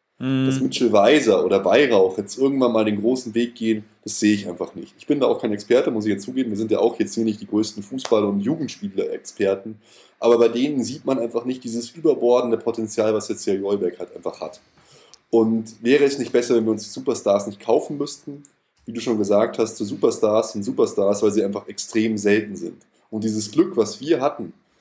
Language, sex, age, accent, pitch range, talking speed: German, male, 20-39, German, 105-125 Hz, 215 wpm